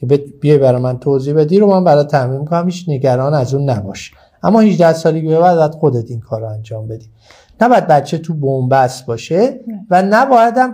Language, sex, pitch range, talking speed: Persian, male, 140-180 Hz, 190 wpm